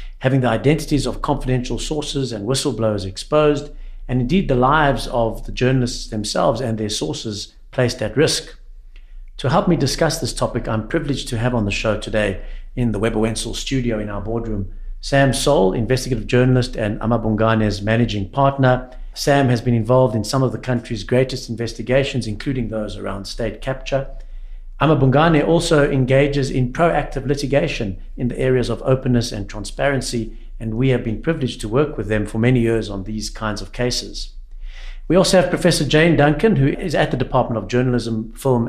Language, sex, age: English, male, 60-79